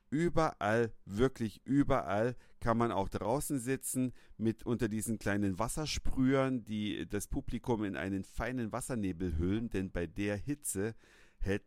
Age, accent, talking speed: 50-69, German, 135 wpm